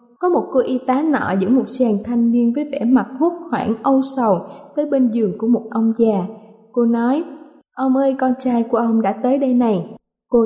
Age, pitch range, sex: 20-39, 215-270 Hz, female